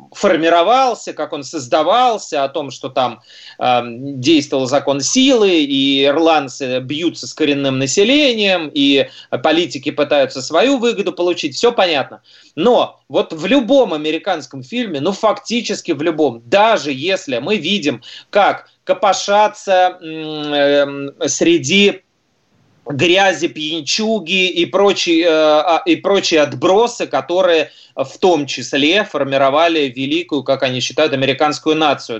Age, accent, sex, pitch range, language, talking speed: 30-49, native, male, 145-200 Hz, Russian, 115 wpm